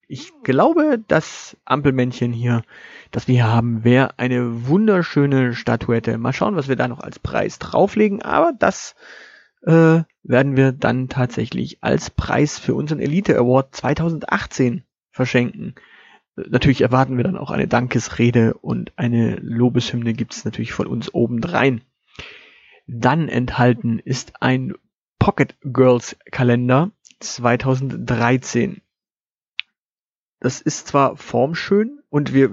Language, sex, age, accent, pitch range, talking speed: German, male, 30-49, German, 125-170 Hz, 120 wpm